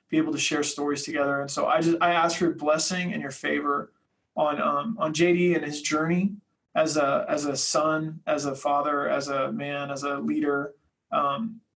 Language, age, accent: English, 20-39, American